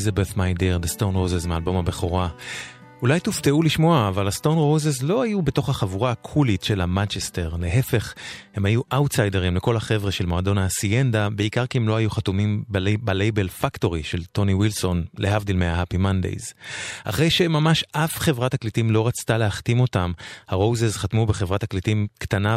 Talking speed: 155 wpm